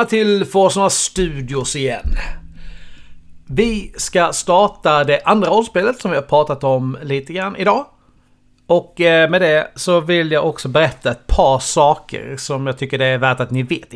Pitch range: 130-185 Hz